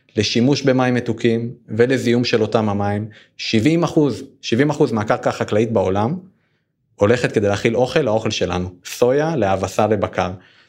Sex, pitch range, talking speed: male, 105-140 Hz, 130 wpm